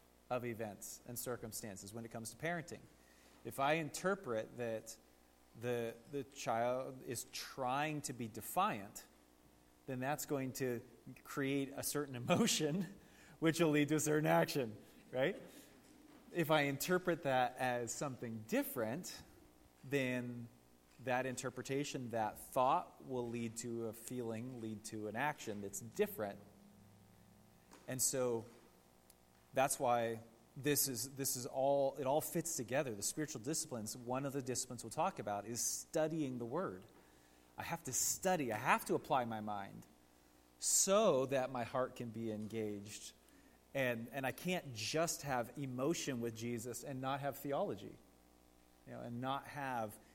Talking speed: 145 wpm